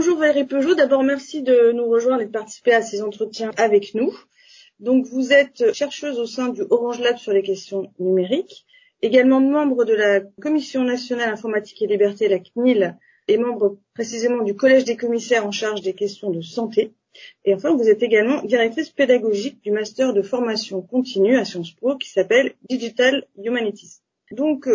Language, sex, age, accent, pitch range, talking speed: French, female, 30-49, French, 210-265 Hz, 175 wpm